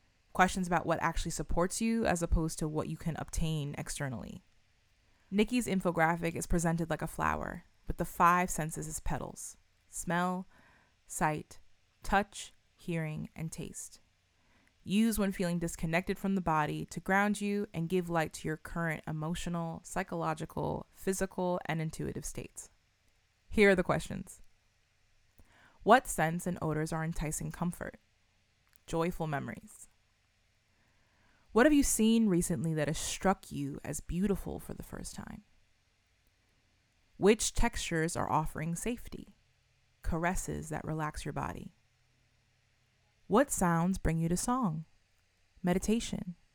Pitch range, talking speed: 105-180 Hz, 130 wpm